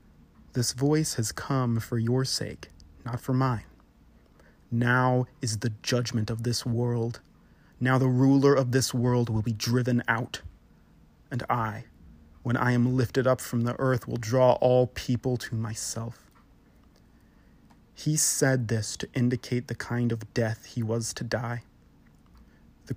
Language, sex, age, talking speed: English, male, 30-49, 150 wpm